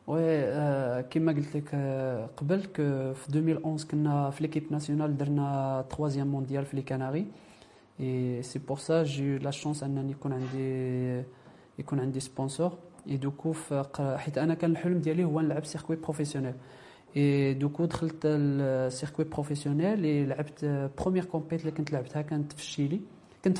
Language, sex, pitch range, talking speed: French, male, 140-160 Hz, 80 wpm